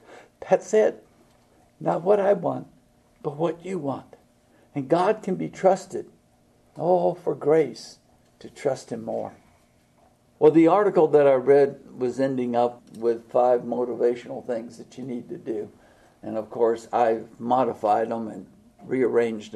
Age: 60-79